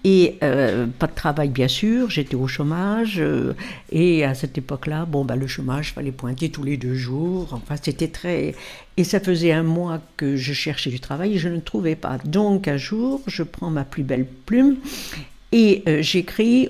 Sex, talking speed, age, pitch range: female, 200 wpm, 60-79, 145-190 Hz